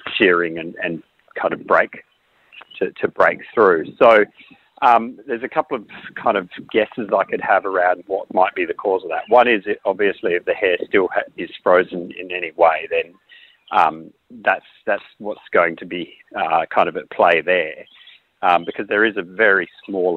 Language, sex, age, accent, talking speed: English, male, 40-59, Australian, 195 wpm